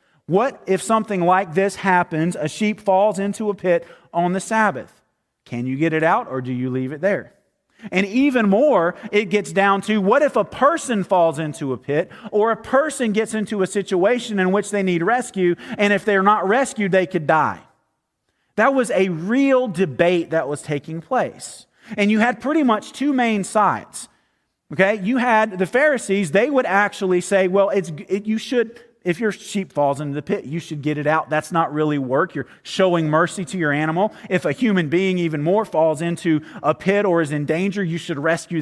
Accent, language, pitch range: American, English, 155-210 Hz